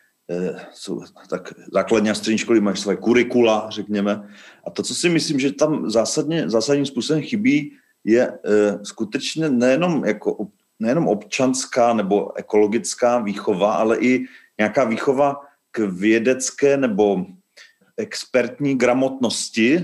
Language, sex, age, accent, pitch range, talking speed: Czech, male, 40-59, native, 105-135 Hz, 120 wpm